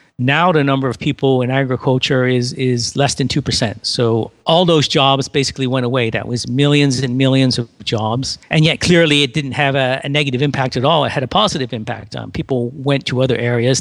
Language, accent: English, American